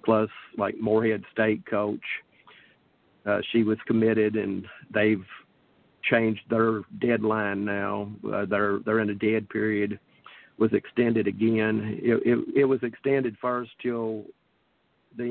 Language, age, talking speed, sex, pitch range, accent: English, 50-69, 130 wpm, male, 105-120 Hz, American